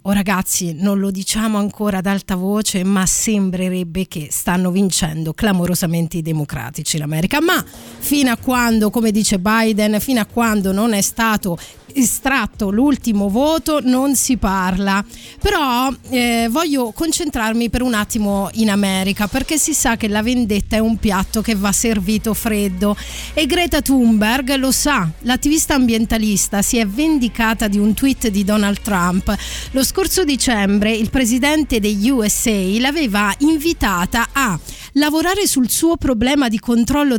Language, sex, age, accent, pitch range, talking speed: Italian, female, 30-49, native, 205-265 Hz, 150 wpm